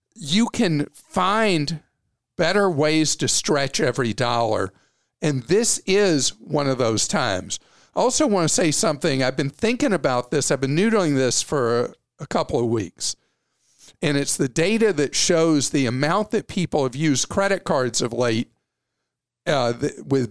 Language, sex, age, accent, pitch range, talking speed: English, male, 50-69, American, 130-185 Hz, 160 wpm